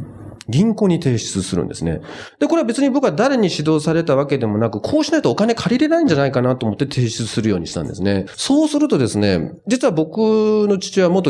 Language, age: Japanese, 40-59